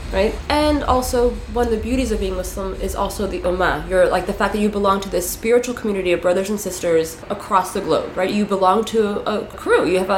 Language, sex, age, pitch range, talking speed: English, female, 20-39, 185-240 Hz, 235 wpm